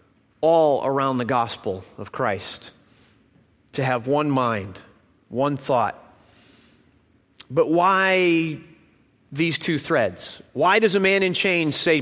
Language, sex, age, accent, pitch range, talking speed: English, male, 30-49, American, 135-185 Hz, 120 wpm